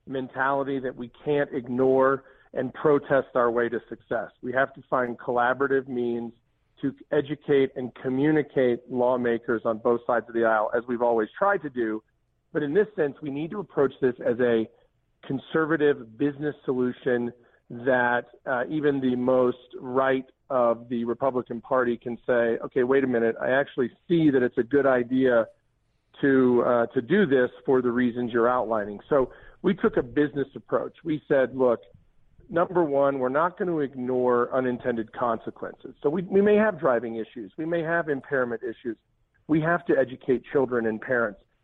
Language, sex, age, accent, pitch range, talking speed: English, male, 40-59, American, 120-150 Hz, 170 wpm